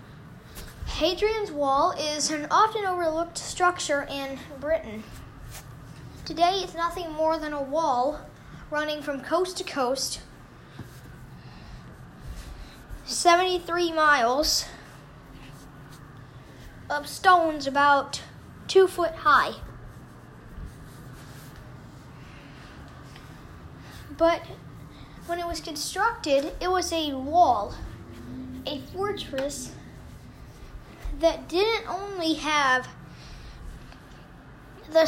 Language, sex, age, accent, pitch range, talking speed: English, female, 10-29, American, 275-345 Hz, 75 wpm